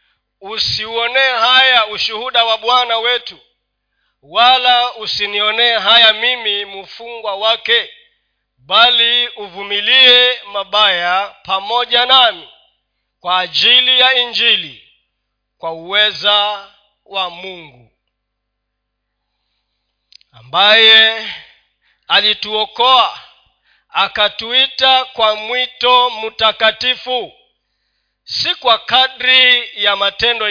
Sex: male